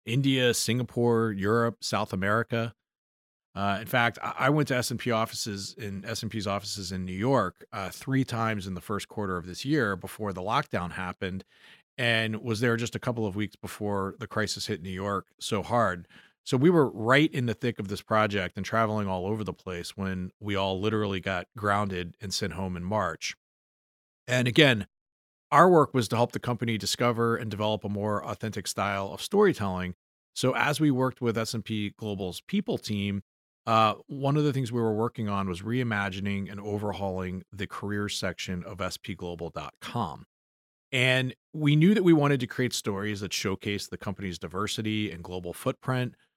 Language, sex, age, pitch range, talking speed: English, male, 40-59, 95-120 Hz, 180 wpm